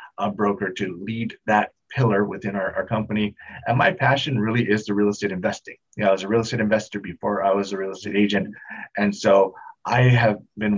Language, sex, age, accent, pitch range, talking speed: English, male, 30-49, American, 100-110 Hz, 215 wpm